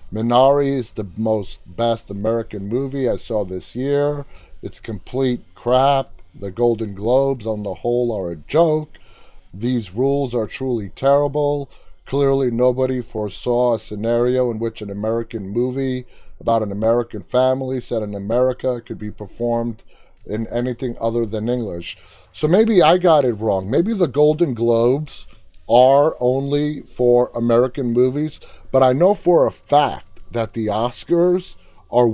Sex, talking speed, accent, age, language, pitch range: male, 145 wpm, American, 30-49, English, 110-135 Hz